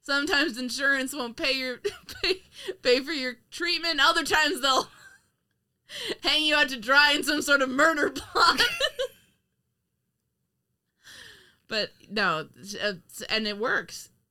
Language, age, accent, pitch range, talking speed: English, 20-39, American, 175-245 Hz, 120 wpm